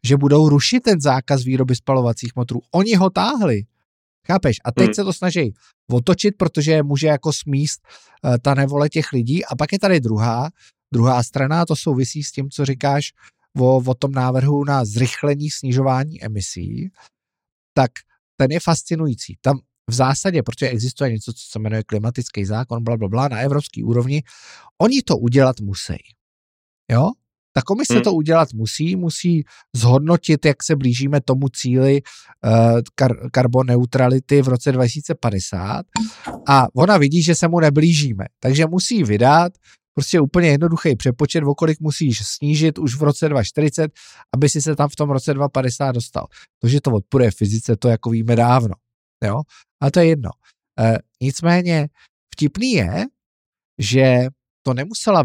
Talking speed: 150 wpm